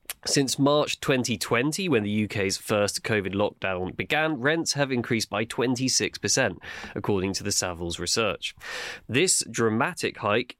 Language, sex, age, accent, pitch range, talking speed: English, male, 20-39, British, 100-135 Hz, 130 wpm